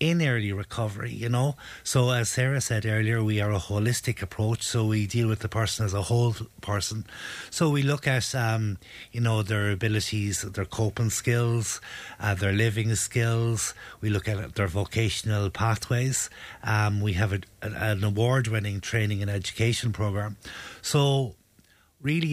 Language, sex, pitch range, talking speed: English, male, 105-125 Hz, 160 wpm